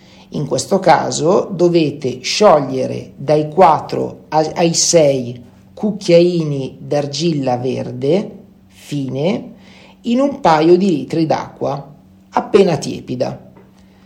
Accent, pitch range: native, 140-185 Hz